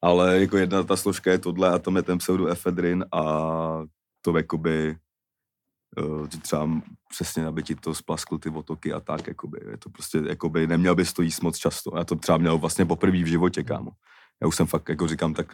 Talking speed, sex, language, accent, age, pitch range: 190 wpm, male, Czech, native, 30-49, 80-90 Hz